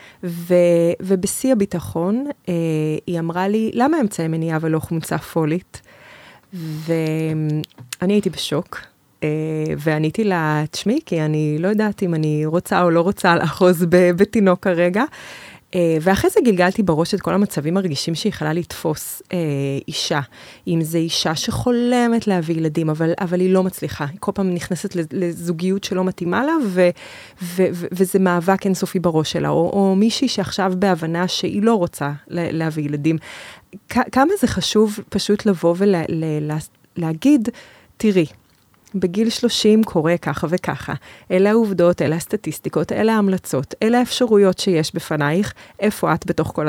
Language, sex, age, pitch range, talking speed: English, female, 20-39, 160-200 Hz, 120 wpm